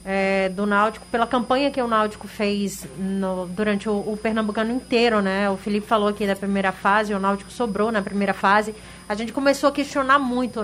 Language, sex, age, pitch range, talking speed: Portuguese, female, 30-49, 210-245 Hz, 195 wpm